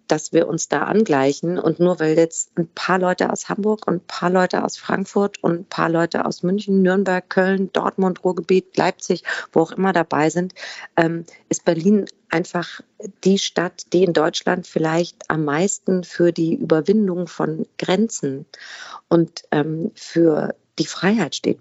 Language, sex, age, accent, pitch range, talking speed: German, female, 40-59, German, 160-195 Hz, 160 wpm